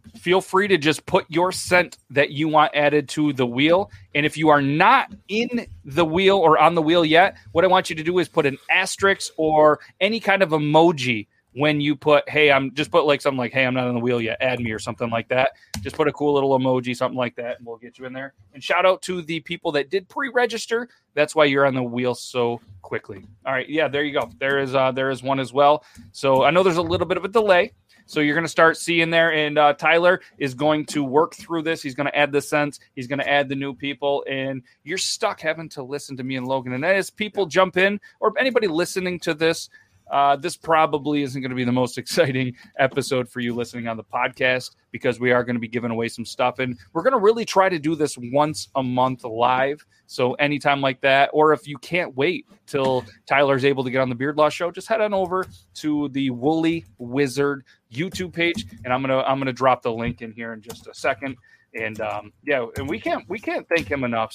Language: English